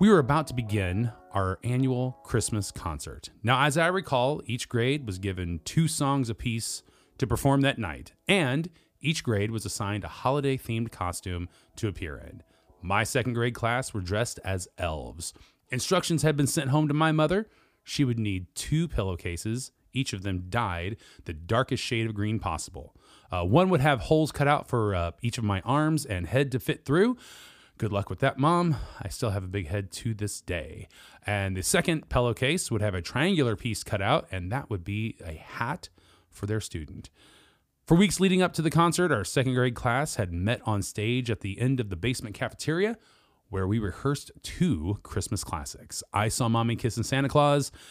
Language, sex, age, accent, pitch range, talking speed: English, male, 30-49, American, 100-140 Hz, 190 wpm